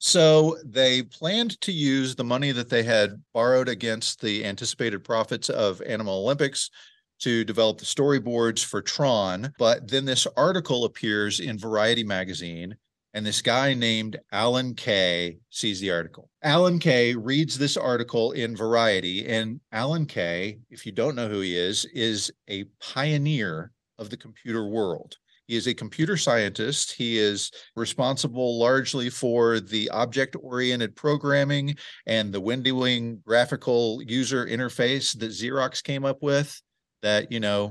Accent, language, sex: American, English, male